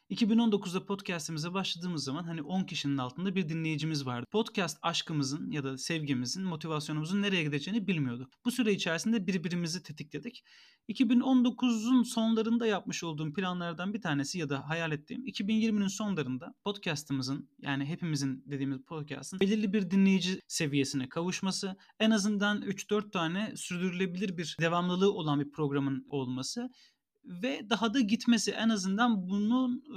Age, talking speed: 30-49, 130 wpm